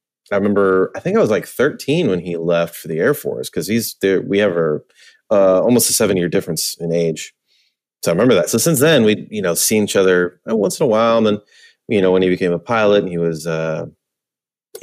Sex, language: male, English